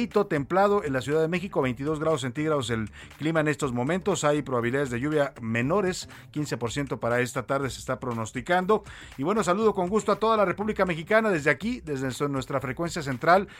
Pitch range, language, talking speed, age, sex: 120-160 Hz, Spanish, 185 wpm, 50-69, male